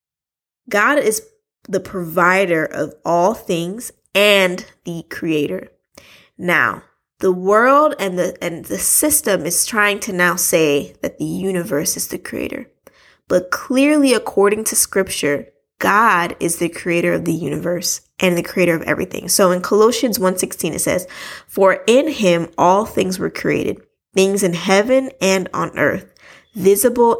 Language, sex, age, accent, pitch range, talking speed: English, female, 20-39, American, 170-205 Hz, 145 wpm